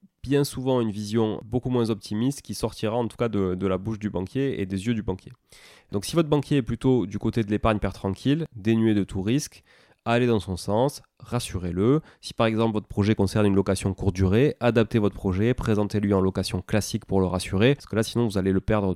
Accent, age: French, 20-39